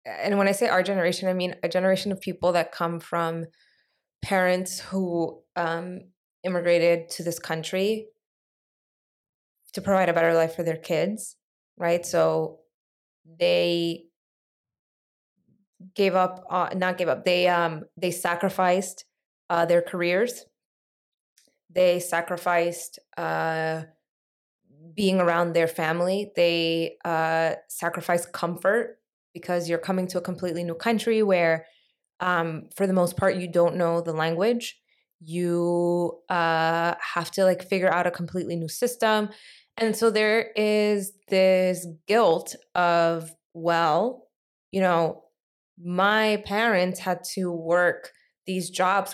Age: 20-39